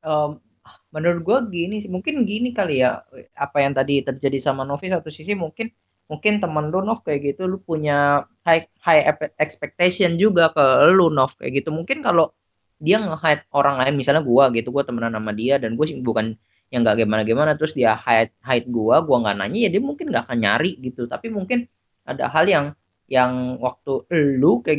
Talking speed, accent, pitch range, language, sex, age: 185 wpm, native, 130-175 Hz, Indonesian, female, 20-39